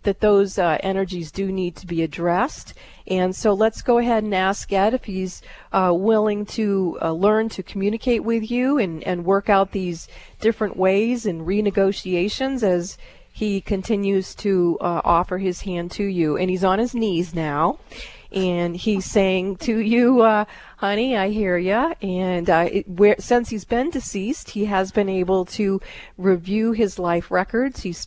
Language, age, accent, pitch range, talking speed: English, 40-59, American, 180-210 Hz, 170 wpm